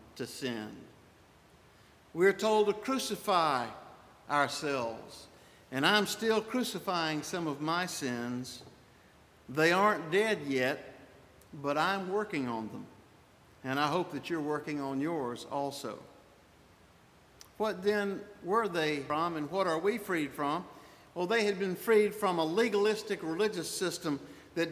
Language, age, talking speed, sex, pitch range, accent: English, 60-79, 135 wpm, male, 140-205 Hz, American